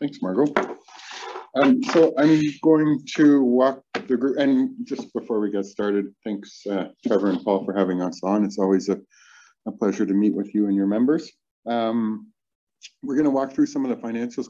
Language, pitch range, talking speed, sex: English, 100-125 Hz, 190 wpm, male